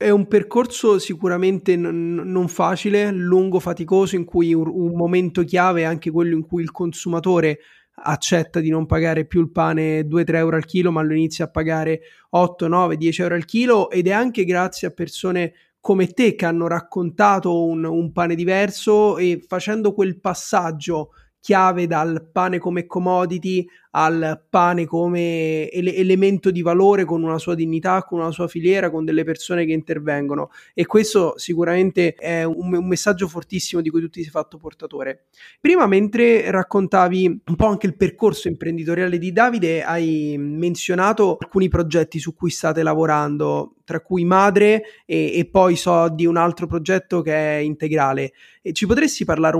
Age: 30-49